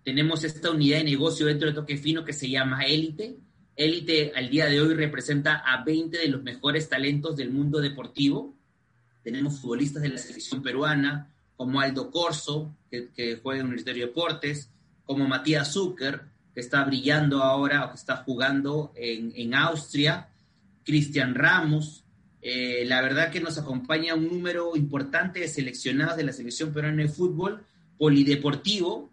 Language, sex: Spanish, male